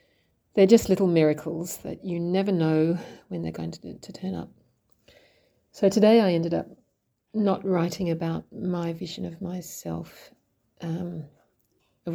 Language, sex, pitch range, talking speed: English, female, 120-180 Hz, 145 wpm